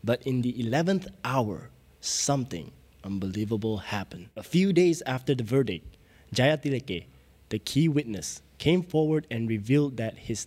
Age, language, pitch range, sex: 20-39, Tamil, 110-145 Hz, male